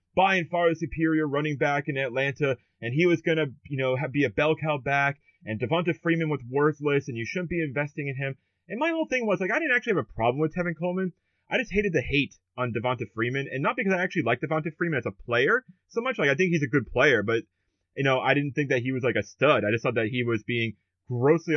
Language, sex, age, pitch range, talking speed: English, male, 30-49, 120-160 Hz, 265 wpm